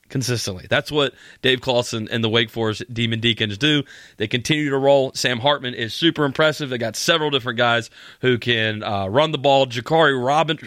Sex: male